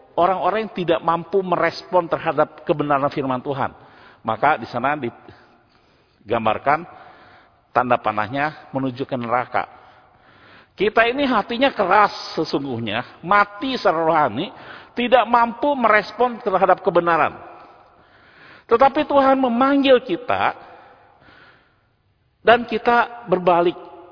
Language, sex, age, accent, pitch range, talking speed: Indonesian, male, 50-69, native, 155-240 Hz, 95 wpm